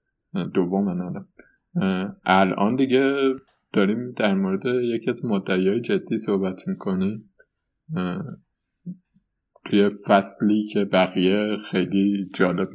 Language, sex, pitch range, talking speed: Persian, male, 95-135 Hz, 85 wpm